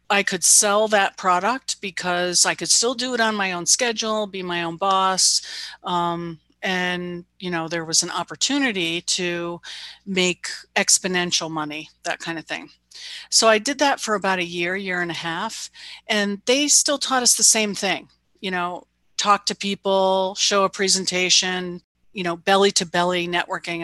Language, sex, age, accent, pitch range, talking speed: English, female, 40-59, American, 175-210 Hz, 175 wpm